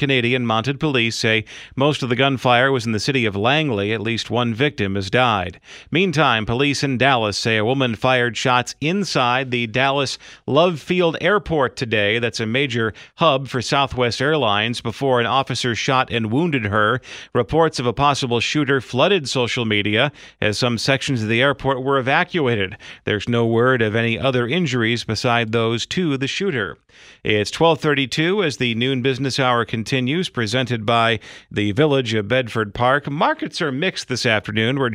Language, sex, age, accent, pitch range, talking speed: English, male, 40-59, American, 115-145 Hz, 170 wpm